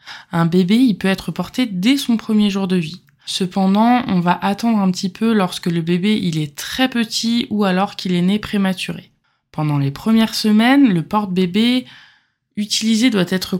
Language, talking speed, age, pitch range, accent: French, 180 wpm, 20-39, 170-225 Hz, French